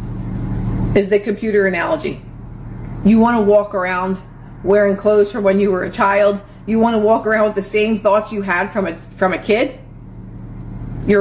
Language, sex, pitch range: English, female, 175-220 Hz